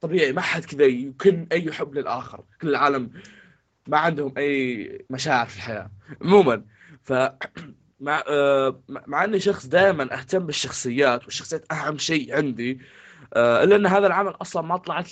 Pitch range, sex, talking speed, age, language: 125-170 Hz, male, 155 wpm, 20-39, Arabic